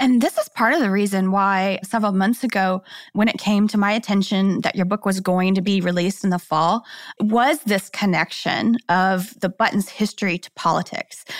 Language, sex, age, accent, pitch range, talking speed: English, female, 20-39, American, 190-245 Hz, 195 wpm